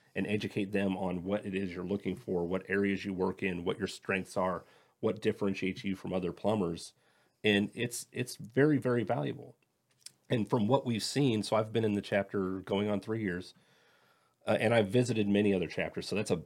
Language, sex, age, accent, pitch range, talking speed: English, male, 40-59, American, 90-110 Hz, 205 wpm